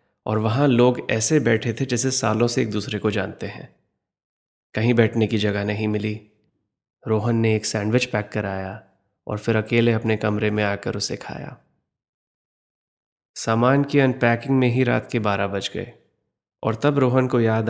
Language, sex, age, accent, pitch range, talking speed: Hindi, male, 30-49, native, 105-115 Hz, 170 wpm